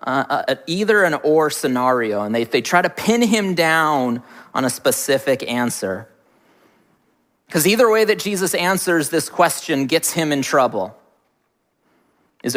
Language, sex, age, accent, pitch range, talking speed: English, male, 30-49, American, 140-205 Hz, 150 wpm